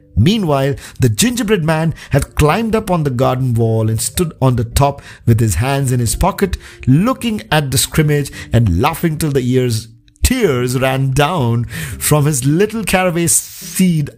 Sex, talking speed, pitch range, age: male, 165 wpm, 110-150 Hz, 50-69